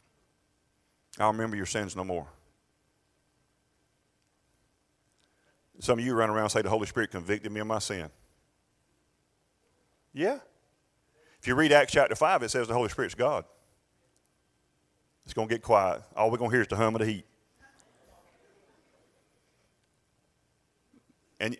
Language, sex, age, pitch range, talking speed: English, male, 40-59, 85-115 Hz, 140 wpm